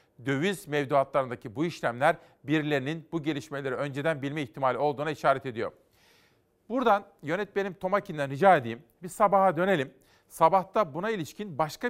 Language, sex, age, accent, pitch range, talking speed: Turkish, male, 40-59, native, 145-190 Hz, 125 wpm